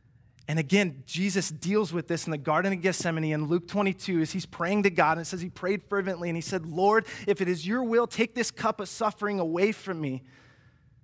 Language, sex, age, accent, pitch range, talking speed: English, male, 20-39, American, 120-155 Hz, 230 wpm